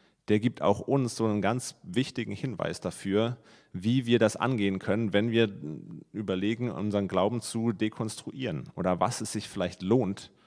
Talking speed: 160 wpm